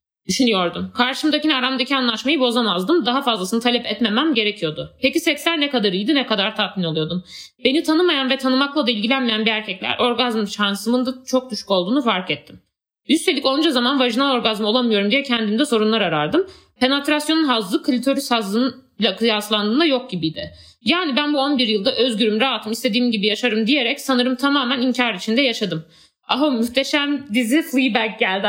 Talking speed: 155 wpm